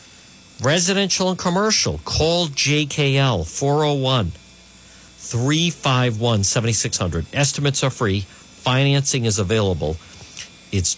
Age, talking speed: 50-69, 70 wpm